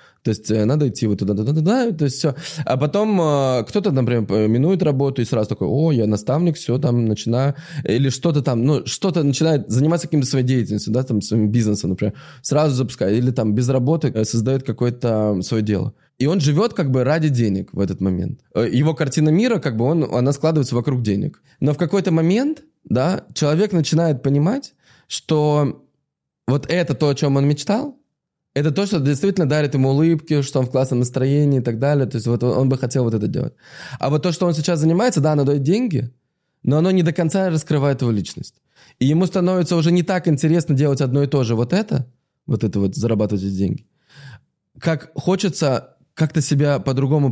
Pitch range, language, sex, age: 120-160 Hz, Russian, male, 20-39